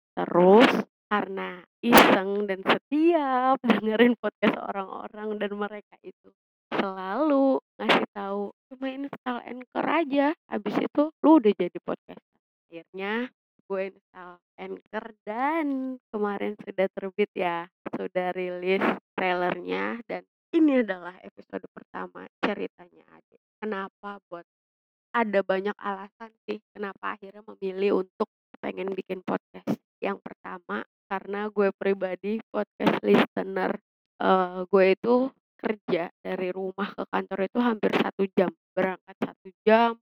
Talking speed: 115 wpm